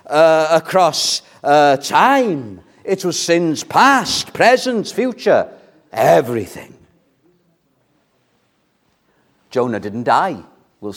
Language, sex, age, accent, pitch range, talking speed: English, male, 50-69, British, 140-210 Hz, 80 wpm